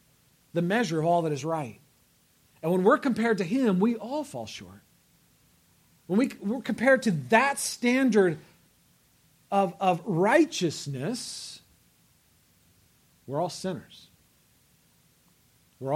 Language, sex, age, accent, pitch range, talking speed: English, male, 40-59, American, 140-190 Hz, 115 wpm